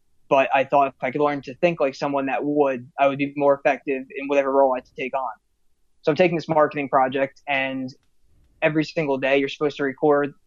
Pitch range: 130-145 Hz